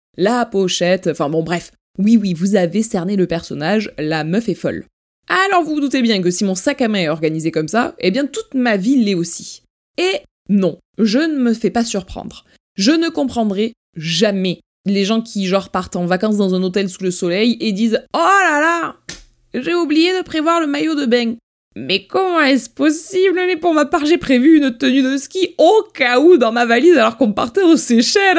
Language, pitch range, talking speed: French, 185-270 Hz, 215 wpm